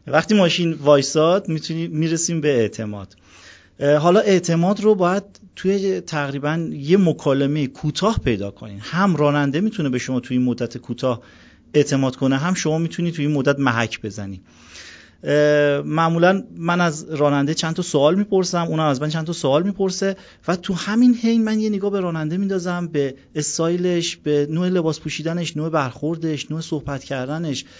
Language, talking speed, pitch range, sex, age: Persian, 155 wpm, 135-170 Hz, male, 40-59